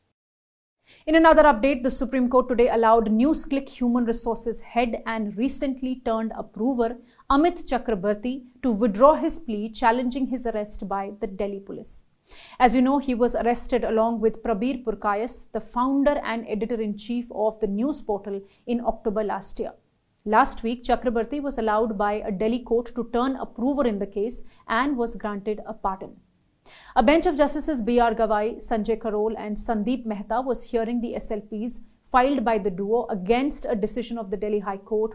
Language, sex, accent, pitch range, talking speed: English, female, Indian, 215-255 Hz, 165 wpm